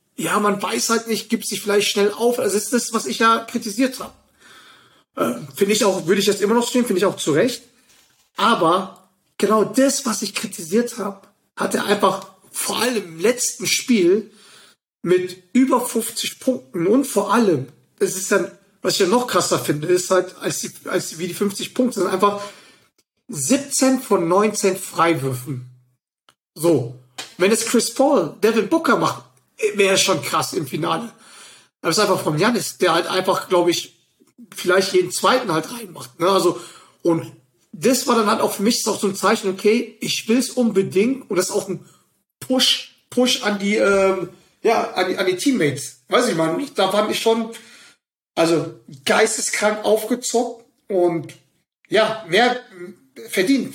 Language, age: German, 40-59